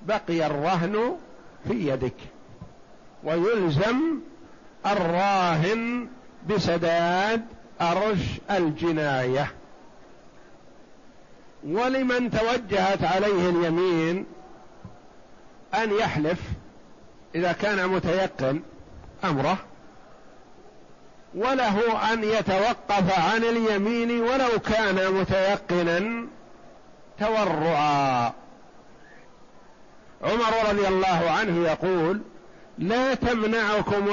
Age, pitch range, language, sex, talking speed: 50-69, 170-220 Hz, Arabic, male, 60 wpm